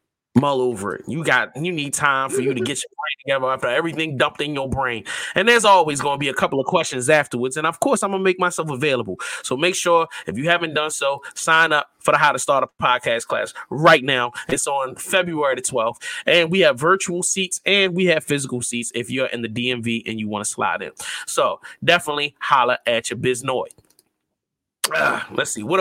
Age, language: 20-39, English